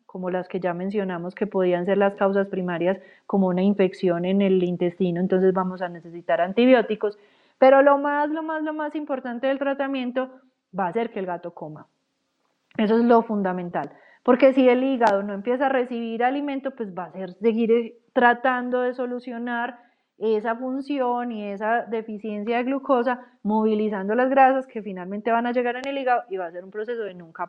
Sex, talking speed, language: female, 185 wpm, Spanish